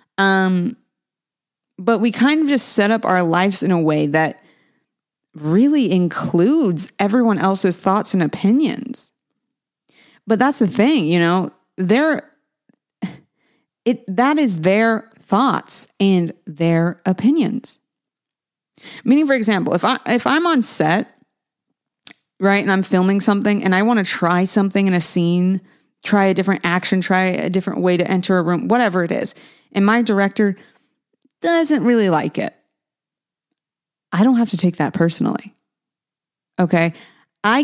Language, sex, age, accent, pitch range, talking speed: English, female, 30-49, American, 175-230 Hz, 145 wpm